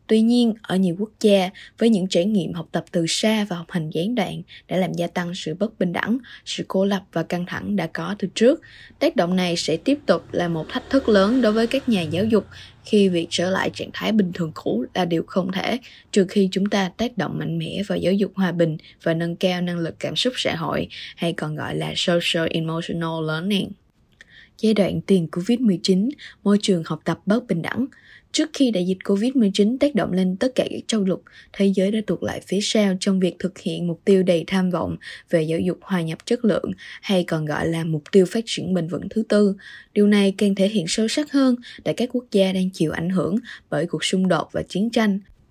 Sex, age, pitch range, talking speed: female, 20-39, 175-215 Hz, 235 wpm